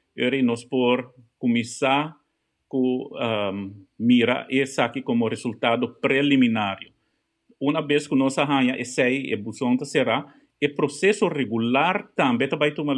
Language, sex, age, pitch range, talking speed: English, male, 50-69, 125-150 Hz, 125 wpm